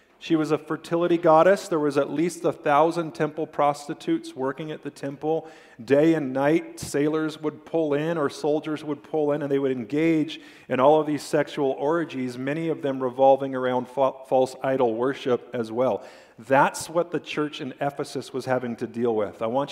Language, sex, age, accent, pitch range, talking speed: English, male, 40-59, American, 135-165 Hz, 190 wpm